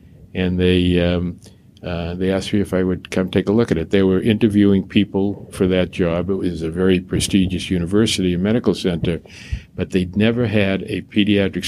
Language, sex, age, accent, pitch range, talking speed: English, male, 50-69, American, 90-105 Hz, 195 wpm